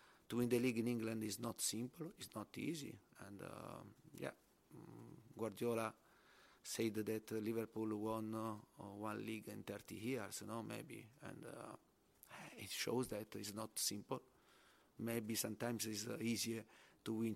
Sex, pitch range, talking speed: male, 110-120 Hz, 145 wpm